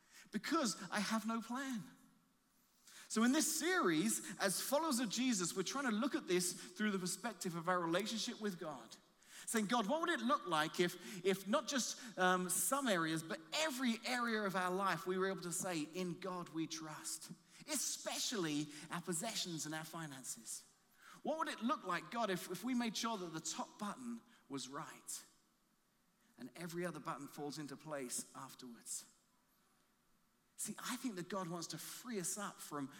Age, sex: 30-49, male